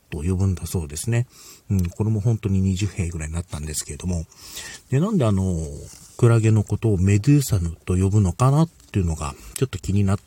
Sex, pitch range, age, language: male, 90-125 Hz, 40-59, Japanese